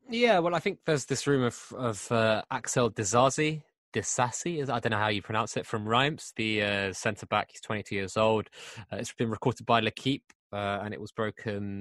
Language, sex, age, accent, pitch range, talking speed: English, male, 20-39, British, 100-120 Hz, 210 wpm